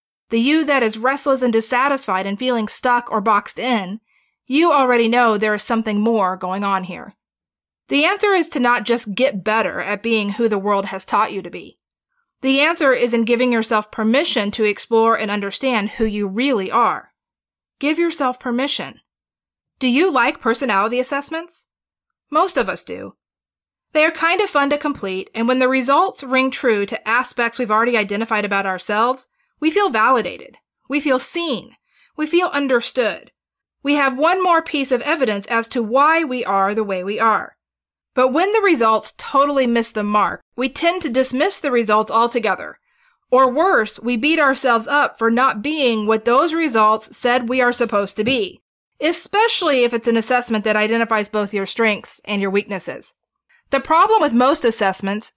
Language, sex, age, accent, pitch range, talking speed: English, female, 30-49, American, 220-285 Hz, 180 wpm